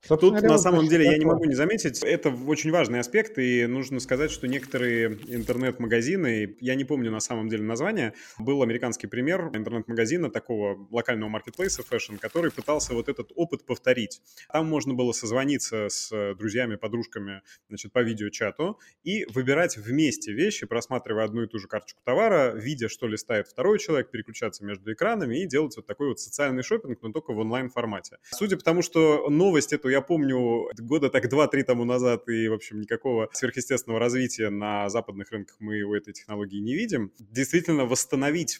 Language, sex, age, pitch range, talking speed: Russian, male, 20-39, 110-140 Hz, 170 wpm